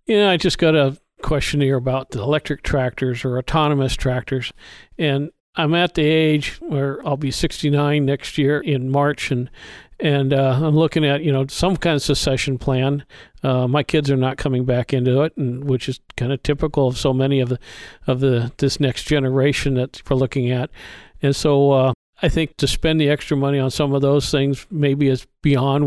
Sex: male